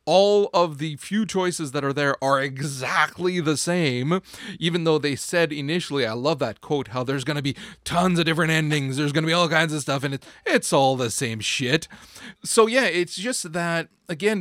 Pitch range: 125-175 Hz